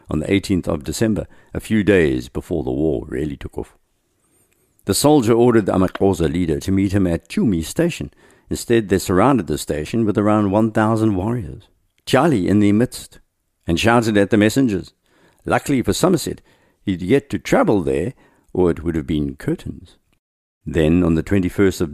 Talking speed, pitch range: 170 wpm, 80-105 Hz